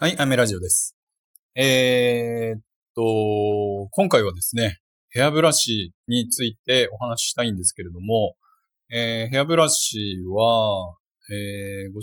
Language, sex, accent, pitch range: Japanese, male, native, 100-145 Hz